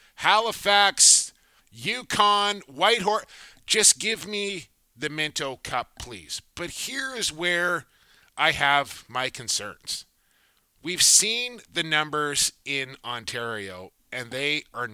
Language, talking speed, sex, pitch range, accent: English, 110 wpm, male, 135-200 Hz, American